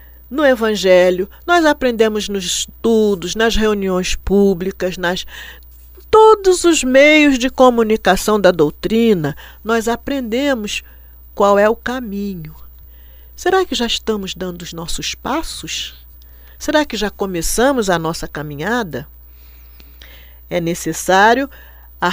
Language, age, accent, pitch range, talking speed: Portuguese, 50-69, Brazilian, 145-230 Hz, 110 wpm